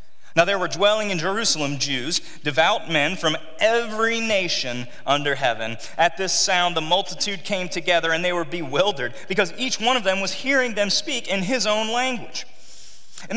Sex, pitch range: male, 155-255 Hz